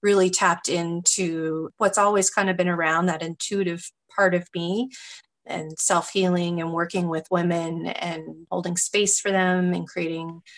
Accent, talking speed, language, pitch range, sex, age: American, 155 wpm, English, 170-205 Hz, female, 30-49